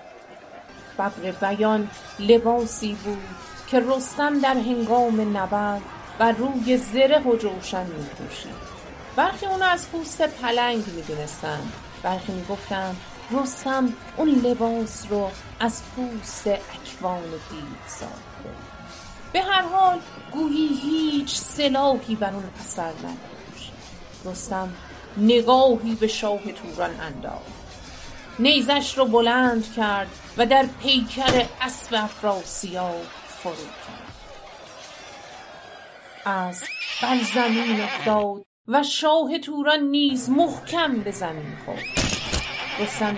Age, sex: 30-49, female